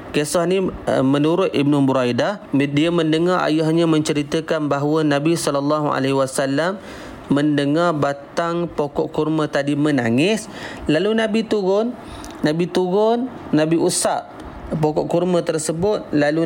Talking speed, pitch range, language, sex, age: 105 wpm, 140-165 Hz, Malay, male, 30-49